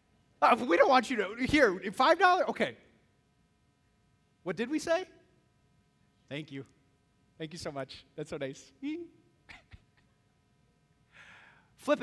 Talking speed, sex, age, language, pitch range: 115 wpm, male, 30-49, English, 140-230 Hz